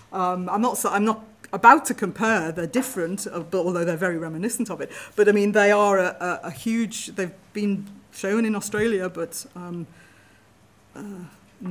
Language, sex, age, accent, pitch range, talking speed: English, female, 40-59, British, 175-205 Hz, 170 wpm